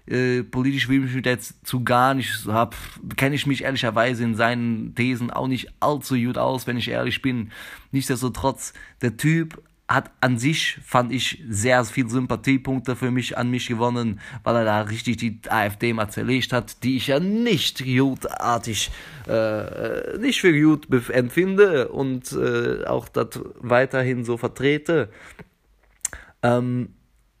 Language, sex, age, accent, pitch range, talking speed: German, male, 20-39, German, 120-135 Hz, 155 wpm